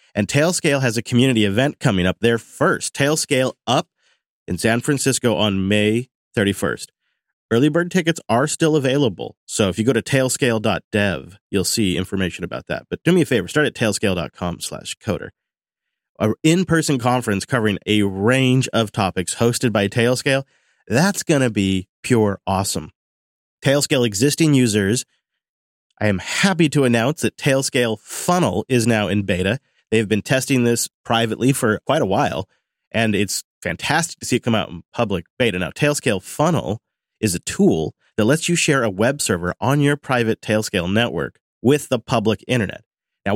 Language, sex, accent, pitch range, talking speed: English, male, American, 105-135 Hz, 165 wpm